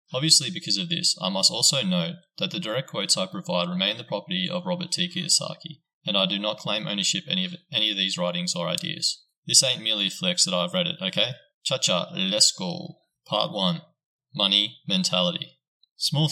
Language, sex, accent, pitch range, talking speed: English, male, Australian, 155-180 Hz, 200 wpm